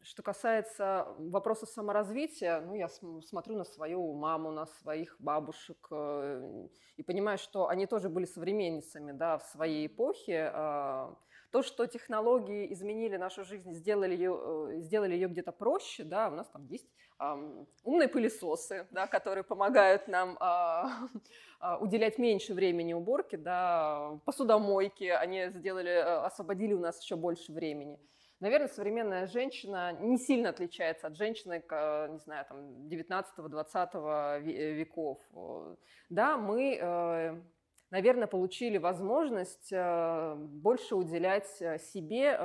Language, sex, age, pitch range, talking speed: Russian, female, 20-39, 160-200 Hz, 110 wpm